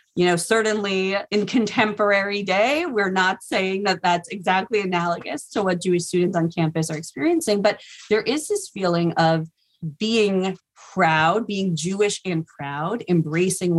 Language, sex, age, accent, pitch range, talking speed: English, female, 30-49, American, 160-190 Hz, 150 wpm